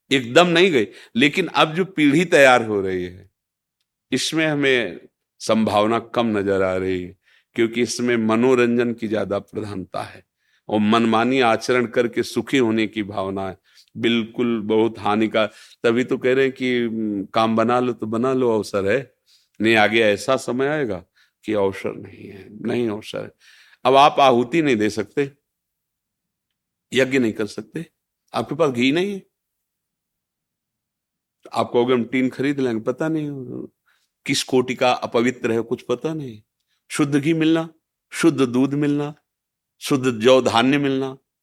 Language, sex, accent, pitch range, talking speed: Hindi, male, native, 110-135 Hz, 145 wpm